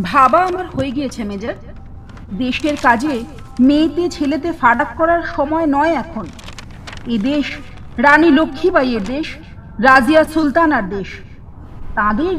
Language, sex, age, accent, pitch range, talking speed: Bengali, female, 40-59, native, 225-320 Hz, 110 wpm